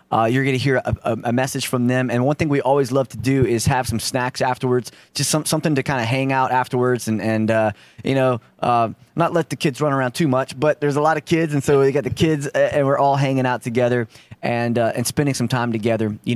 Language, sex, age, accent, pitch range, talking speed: English, male, 20-39, American, 120-140 Hz, 265 wpm